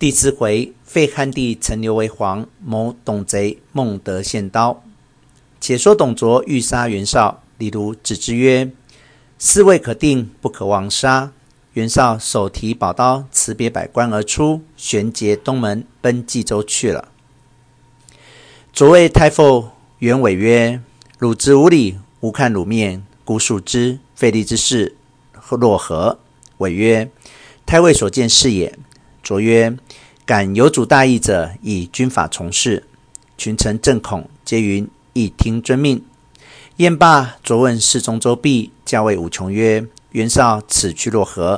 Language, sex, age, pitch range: Chinese, male, 50-69, 110-135 Hz